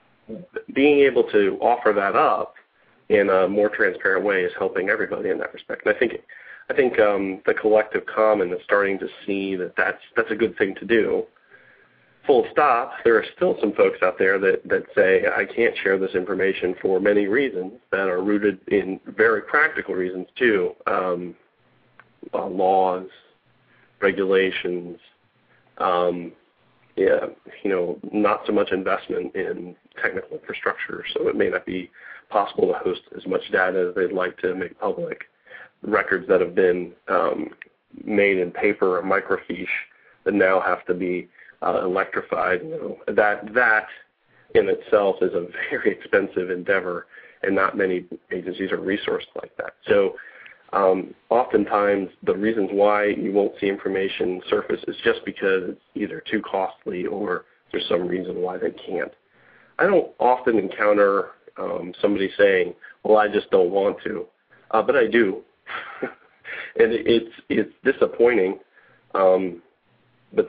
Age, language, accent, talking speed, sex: 40-59, English, American, 155 wpm, male